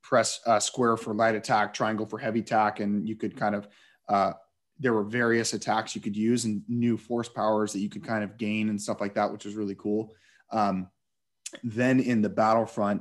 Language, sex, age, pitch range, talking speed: English, male, 30-49, 105-120 Hz, 210 wpm